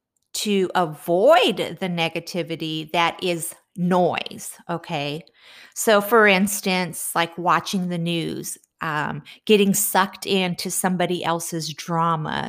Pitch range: 170-220 Hz